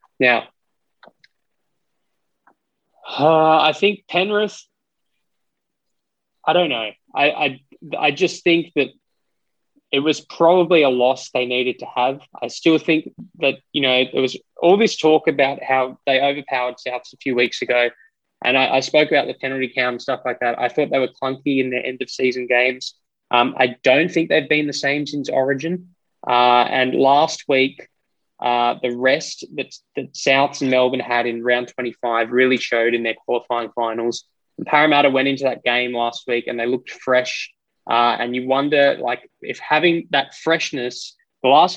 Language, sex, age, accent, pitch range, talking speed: English, male, 20-39, Australian, 125-155 Hz, 170 wpm